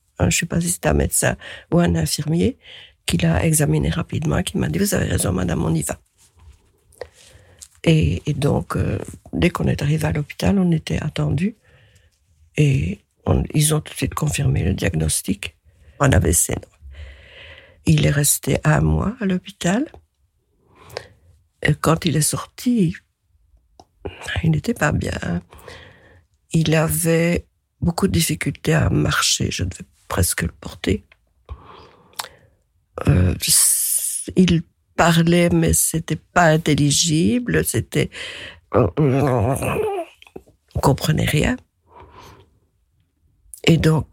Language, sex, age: French, female, 50-69